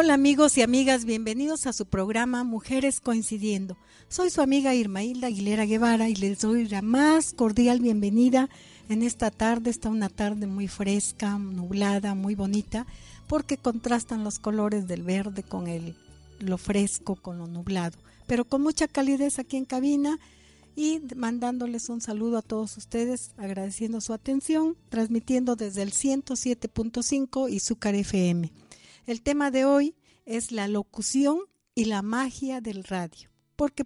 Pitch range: 200-255 Hz